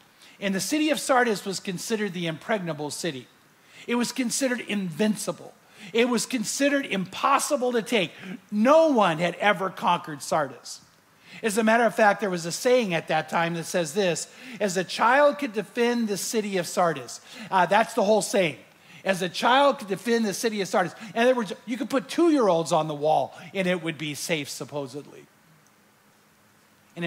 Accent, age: American, 50-69